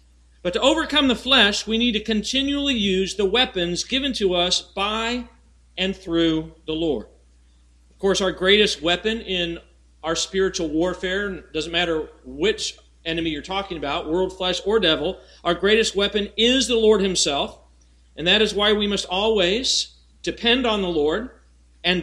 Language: English